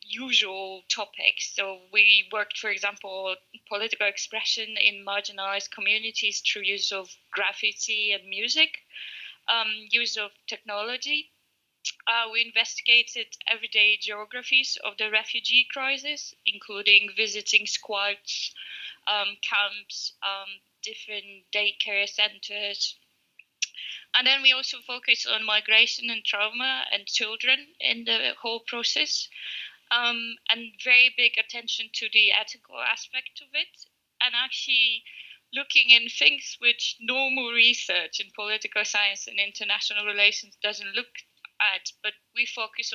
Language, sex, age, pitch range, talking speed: English, female, 20-39, 205-245 Hz, 120 wpm